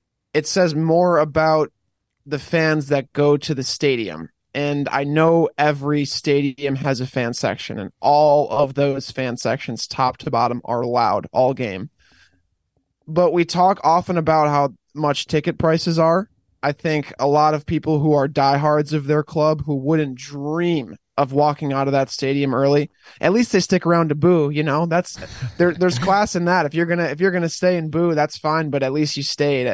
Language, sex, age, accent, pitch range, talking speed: English, male, 20-39, American, 140-160 Hz, 200 wpm